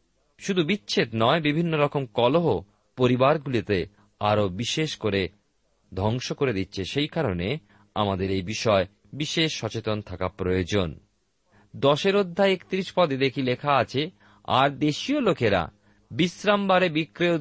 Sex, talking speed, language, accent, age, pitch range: male, 115 wpm, Bengali, native, 40-59, 105-155 Hz